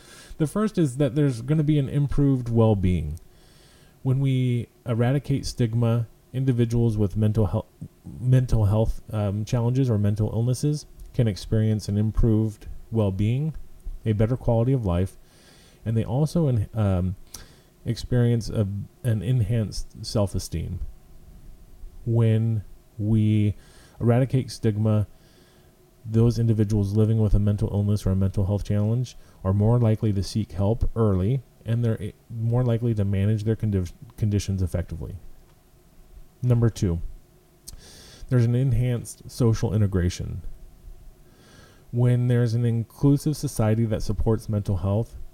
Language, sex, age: English, male, 30-49